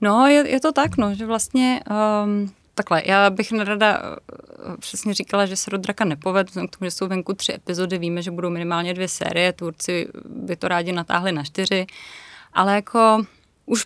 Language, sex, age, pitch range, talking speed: Czech, female, 20-39, 190-215 Hz, 185 wpm